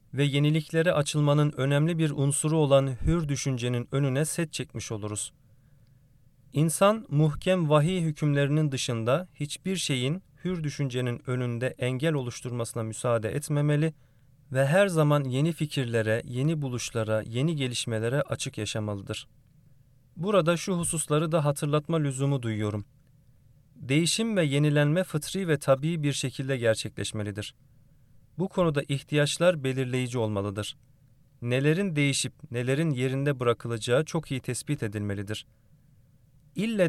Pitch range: 125-155 Hz